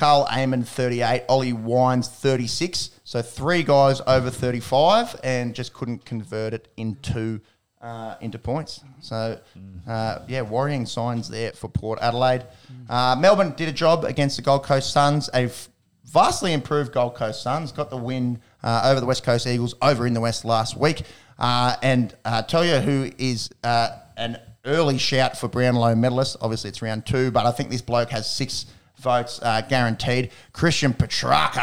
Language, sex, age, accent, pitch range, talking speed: English, male, 30-49, Australian, 115-130 Hz, 175 wpm